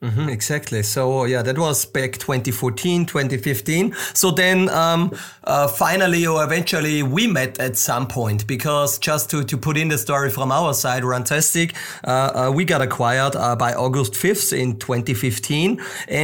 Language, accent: German, German